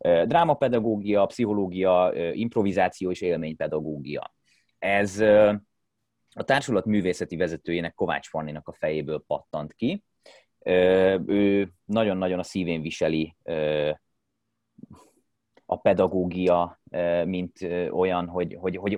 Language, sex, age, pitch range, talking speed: Hungarian, male, 30-49, 85-110 Hz, 85 wpm